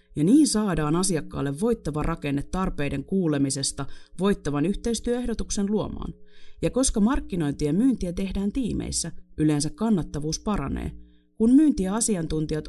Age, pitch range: 30-49, 140-195 Hz